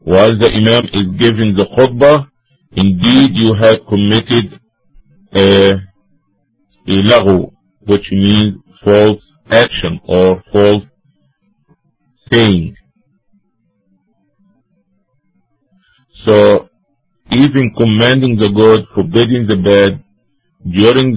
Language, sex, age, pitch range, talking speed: English, male, 50-69, 100-125 Hz, 80 wpm